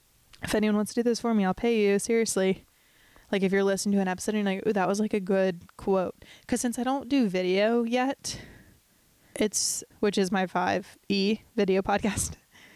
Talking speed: 205 wpm